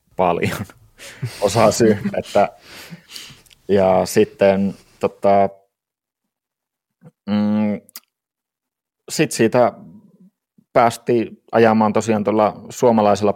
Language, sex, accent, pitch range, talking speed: Finnish, male, native, 95-105 Hz, 65 wpm